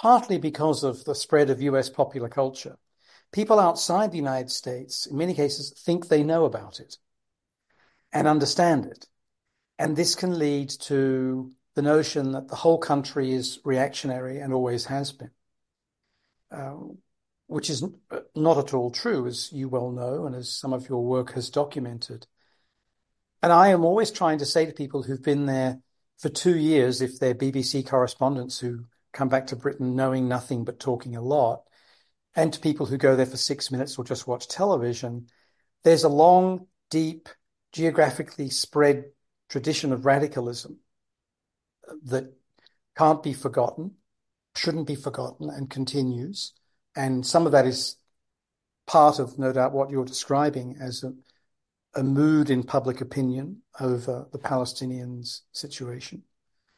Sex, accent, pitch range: male, British, 130-155 Hz